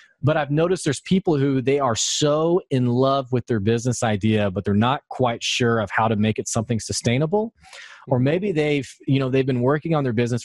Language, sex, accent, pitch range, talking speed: English, male, American, 115-150 Hz, 220 wpm